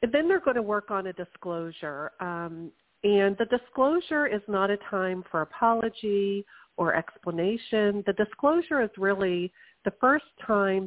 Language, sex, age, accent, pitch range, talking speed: English, female, 50-69, American, 175-215 Hz, 155 wpm